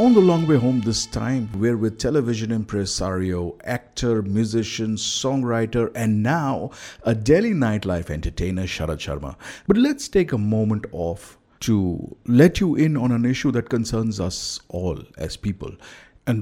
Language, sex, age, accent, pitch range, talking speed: English, male, 50-69, Indian, 100-135 Hz, 155 wpm